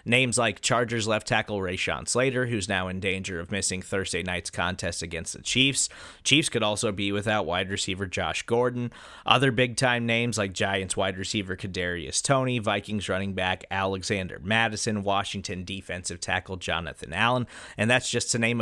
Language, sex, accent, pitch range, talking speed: English, male, American, 100-125 Hz, 170 wpm